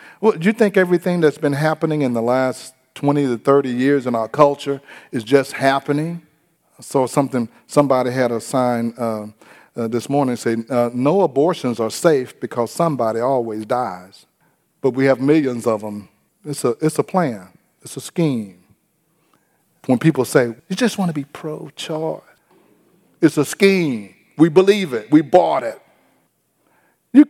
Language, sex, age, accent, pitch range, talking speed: English, male, 40-59, American, 130-180 Hz, 165 wpm